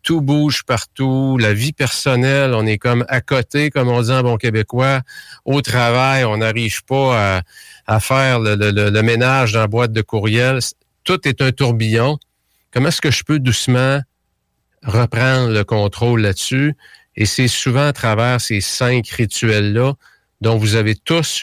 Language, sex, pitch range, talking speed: French, male, 110-135 Hz, 170 wpm